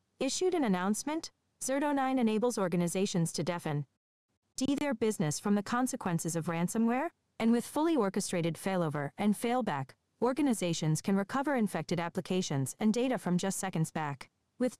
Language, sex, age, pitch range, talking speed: English, female, 40-59, 175-245 Hz, 140 wpm